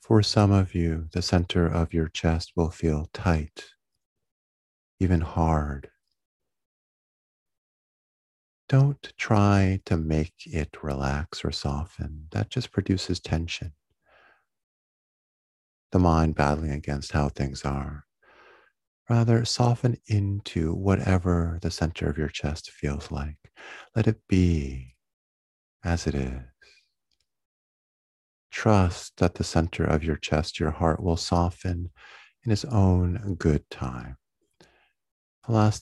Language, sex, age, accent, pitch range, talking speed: English, male, 40-59, American, 70-95 Hz, 115 wpm